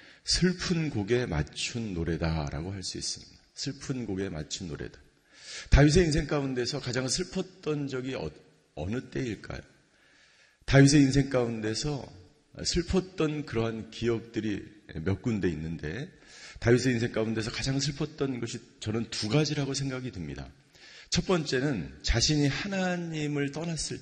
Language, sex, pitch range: Korean, male, 110-150 Hz